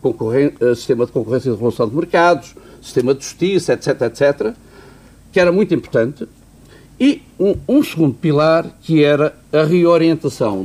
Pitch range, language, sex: 135-190 Hz, Portuguese, male